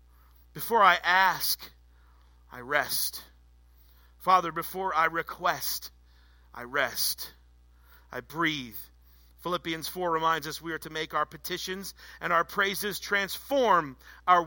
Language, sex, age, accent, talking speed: English, male, 40-59, American, 115 wpm